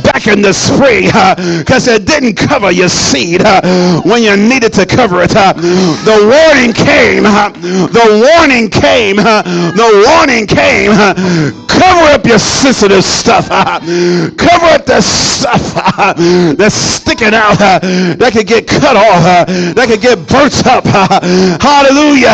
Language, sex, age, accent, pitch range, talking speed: English, male, 50-69, American, 175-245 Hz, 160 wpm